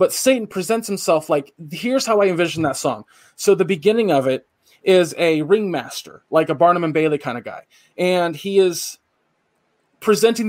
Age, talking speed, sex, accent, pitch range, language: 20-39, 175 wpm, male, American, 155-190 Hz, English